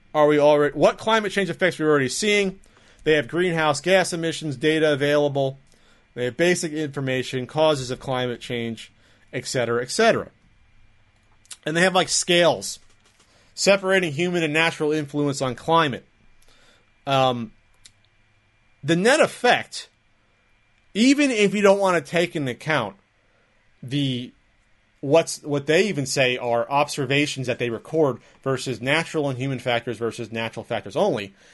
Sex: male